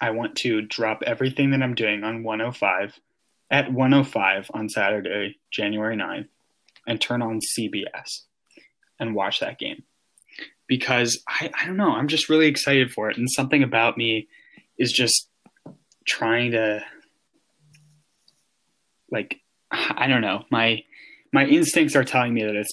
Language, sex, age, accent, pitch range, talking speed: English, male, 10-29, American, 110-135 Hz, 145 wpm